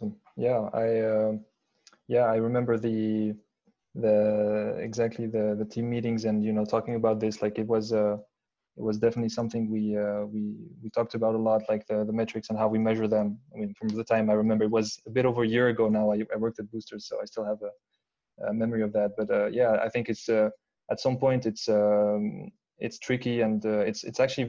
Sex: male